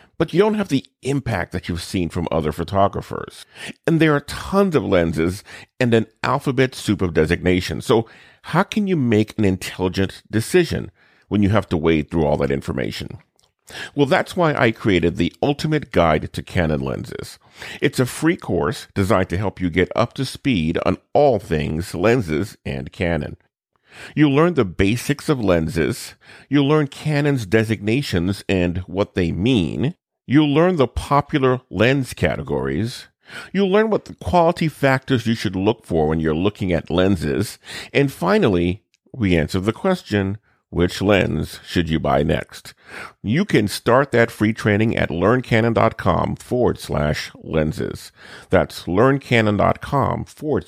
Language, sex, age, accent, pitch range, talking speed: English, male, 50-69, American, 85-135 Hz, 155 wpm